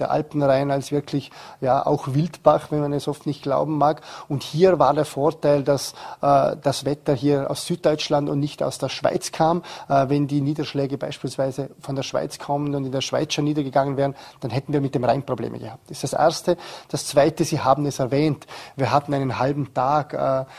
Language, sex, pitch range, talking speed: German, male, 140-155 Hz, 210 wpm